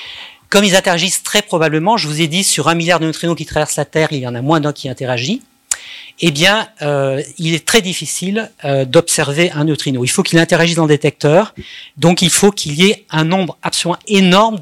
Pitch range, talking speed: 145-185 Hz, 220 wpm